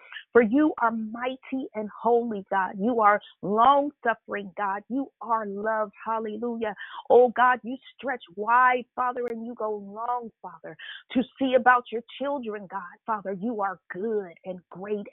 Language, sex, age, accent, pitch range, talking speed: English, female, 40-59, American, 225-265 Hz, 150 wpm